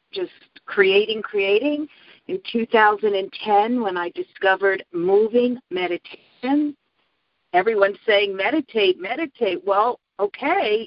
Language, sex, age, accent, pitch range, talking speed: English, female, 50-69, American, 180-280 Hz, 90 wpm